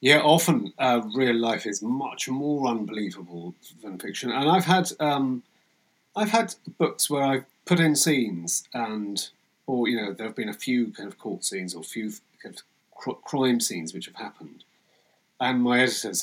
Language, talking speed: English, 180 wpm